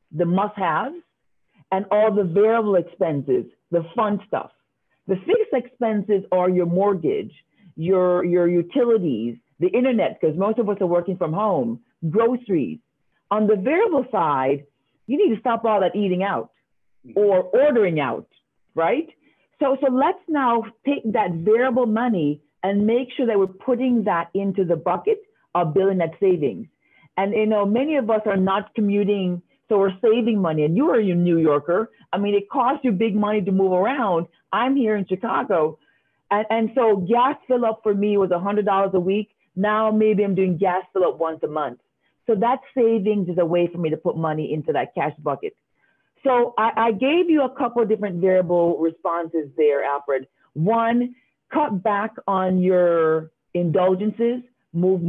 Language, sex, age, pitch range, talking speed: English, female, 50-69, 175-230 Hz, 170 wpm